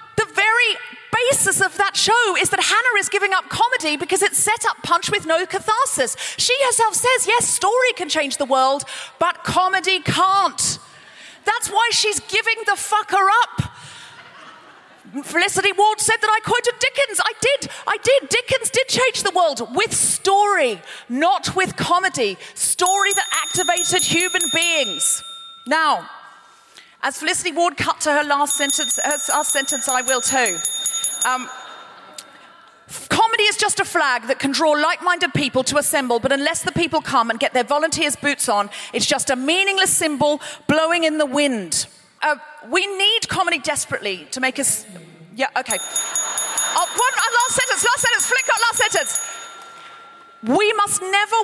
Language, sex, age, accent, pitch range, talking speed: English, female, 40-59, British, 295-415 Hz, 160 wpm